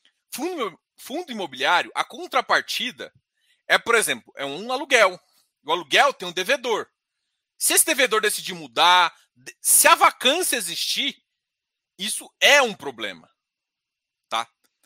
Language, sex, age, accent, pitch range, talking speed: Portuguese, male, 40-59, Brazilian, 215-320 Hz, 115 wpm